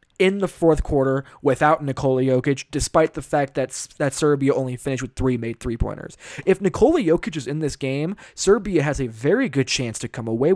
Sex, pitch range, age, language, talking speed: male, 130-170 Hz, 20-39, English, 200 wpm